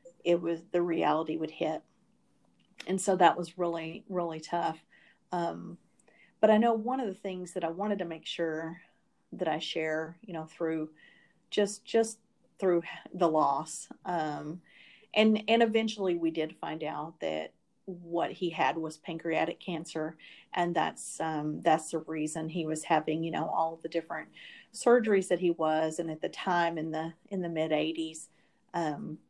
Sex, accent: female, American